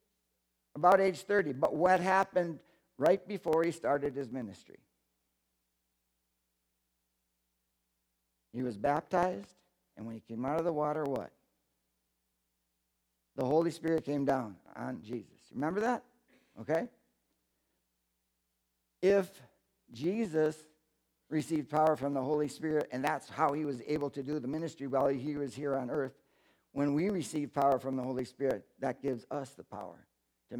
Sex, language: male, English